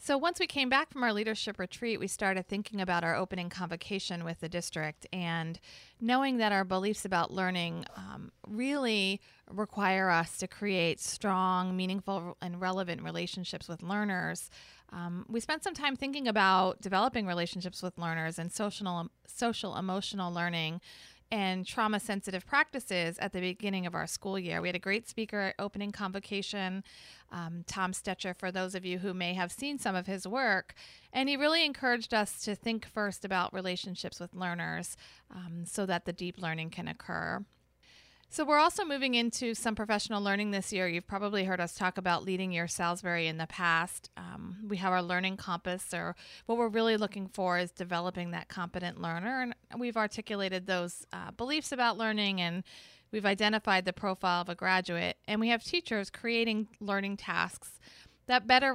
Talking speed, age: 175 wpm, 40-59